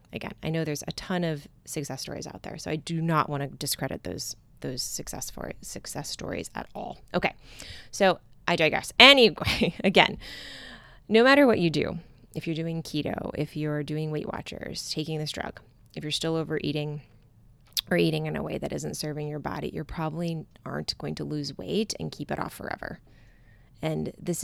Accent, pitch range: American, 145-160 Hz